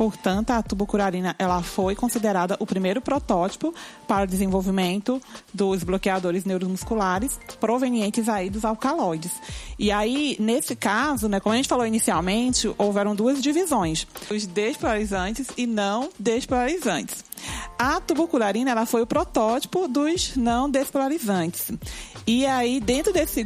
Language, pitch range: Portuguese, 205-265 Hz